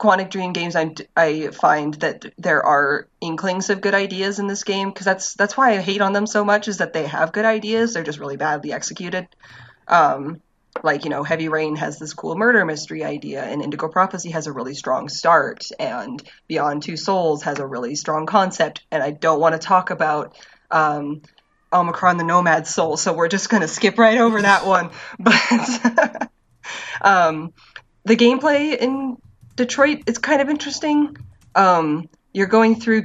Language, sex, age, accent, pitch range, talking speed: English, female, 20-39, American, 150-195 Hz, 185 wpm